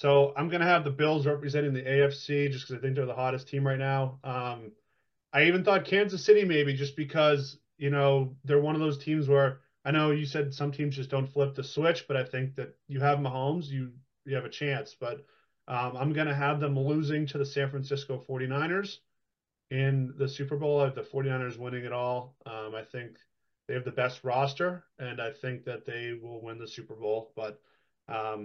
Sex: male